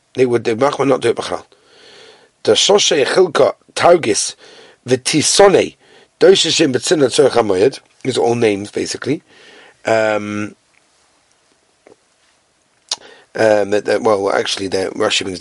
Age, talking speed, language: 40-59, 80 wpm, English